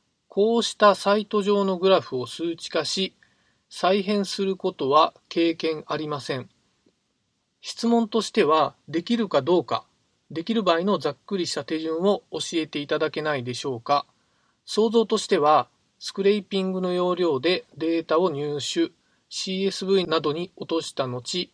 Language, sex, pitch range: Japanese, male, 145-210 Hz